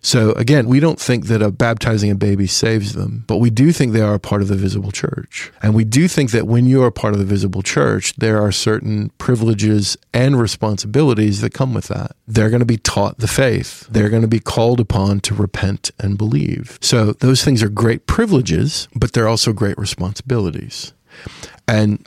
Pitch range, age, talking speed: 100-120 Hz, 40-59, 210 wpm